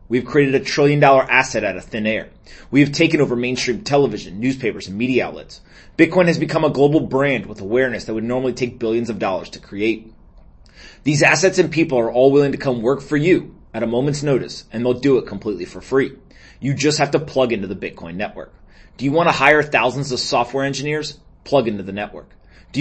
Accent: American